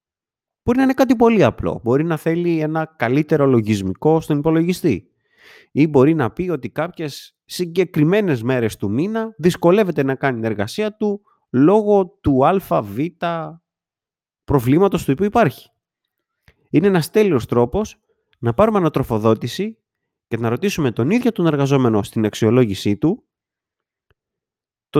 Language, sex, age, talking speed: Greek, male, 30-49, 135 wpm